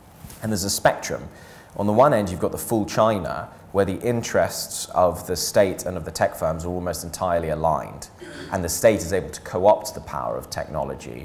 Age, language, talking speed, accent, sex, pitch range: 20-39, English, 210 wpm, British, male, 85-100 Hz